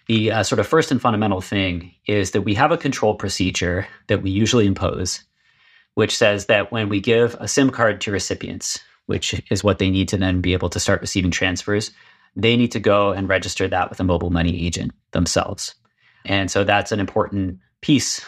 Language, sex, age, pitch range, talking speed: English, male, 30-49, 95-110 Hz, 205 wpm